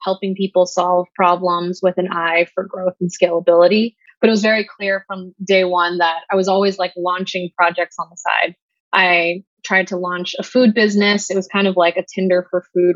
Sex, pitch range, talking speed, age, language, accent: female, 175-195 Hz, 210 wpm, 20-39, English, American